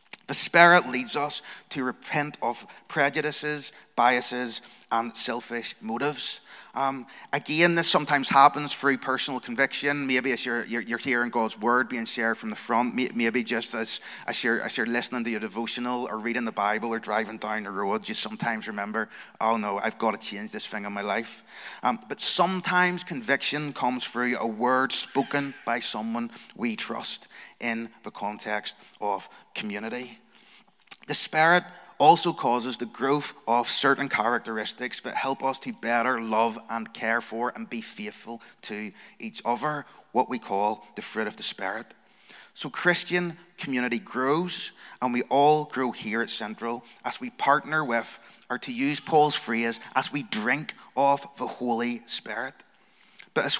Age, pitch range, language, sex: 30-49, 115-145 Hz, English, male